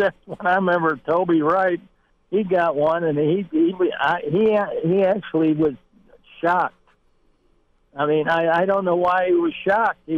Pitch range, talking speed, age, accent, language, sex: 140-170 Hz, 160 wpm, 60-79, American, English, male